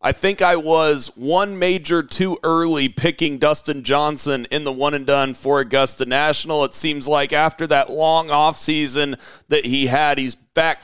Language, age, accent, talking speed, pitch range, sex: English, 40-59, American, 175 wpm, 140-165 Hz, male